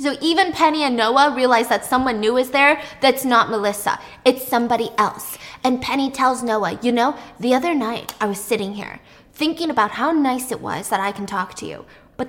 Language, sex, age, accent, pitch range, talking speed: English, female, 10-29, American, 215-280 Hz, 210 wpm